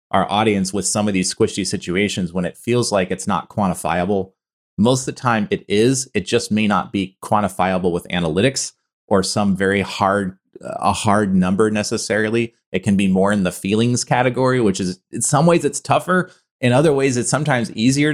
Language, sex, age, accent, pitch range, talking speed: English, male, 30-49, American, 95-125 Hz, 190 wpm